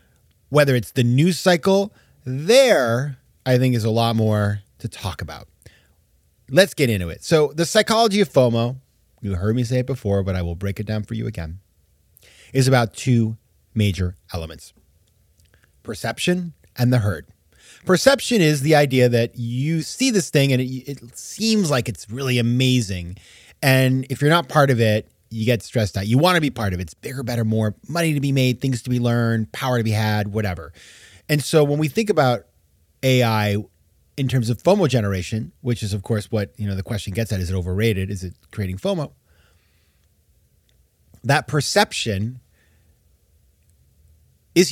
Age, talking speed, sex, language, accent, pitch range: 30-49, 180 wpm, male, English, American, 100-145 Hz